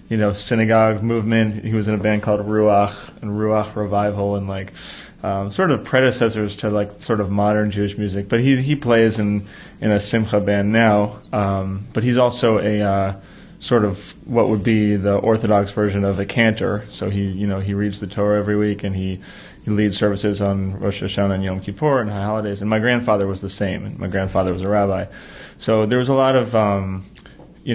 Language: English